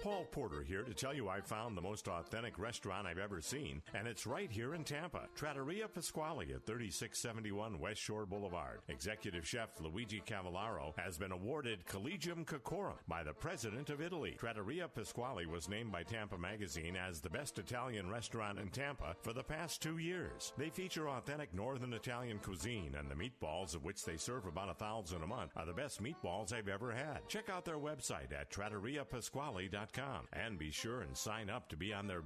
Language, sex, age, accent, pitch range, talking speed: English, male, 60-79, American, 95-125 Hz, 190 wpm